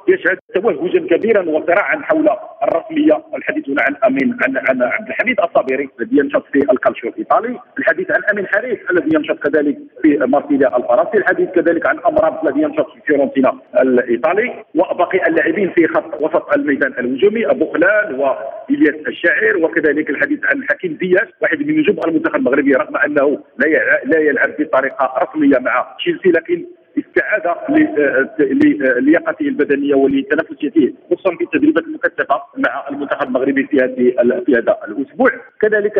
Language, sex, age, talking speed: Arabic, male, 50-69, 140 wpm